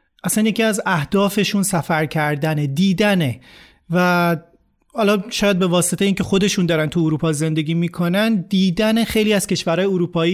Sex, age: male, 30-49